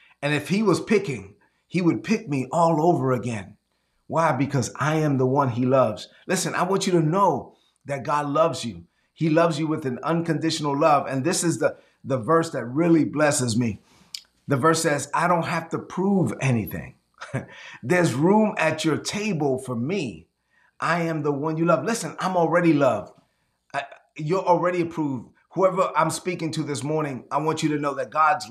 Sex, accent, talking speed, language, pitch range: male, American, 185 wpm, English, 135-165 Hz